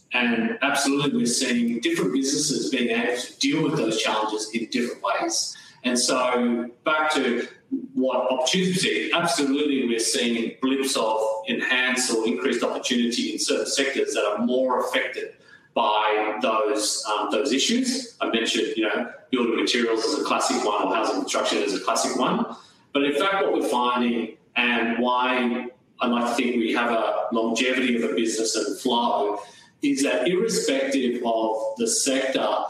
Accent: Australian